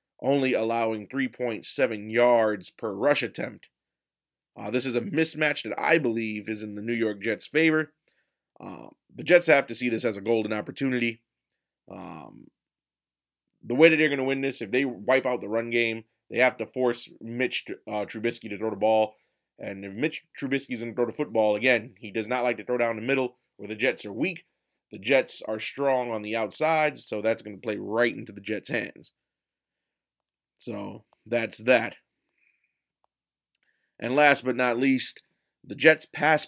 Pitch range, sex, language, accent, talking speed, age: 110-135 Hz, male, English, American, 185 wpm, 20-39